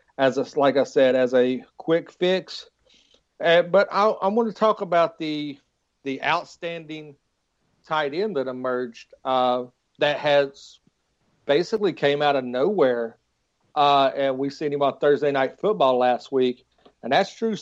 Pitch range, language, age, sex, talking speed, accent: 130-155 Hz, English, 40-59, male, 155 wpm, American